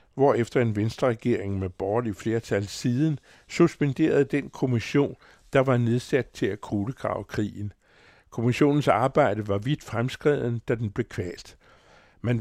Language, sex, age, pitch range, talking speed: Danish, male, 60-79, 100-130 Hz, 140 wpm